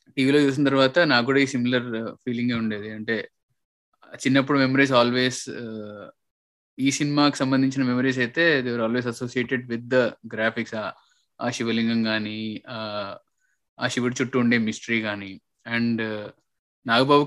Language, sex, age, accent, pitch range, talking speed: Telugu, male, 20-39, native, 115-130 Hz, 125 wpm